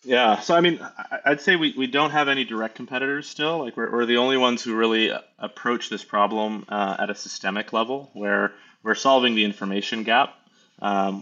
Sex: male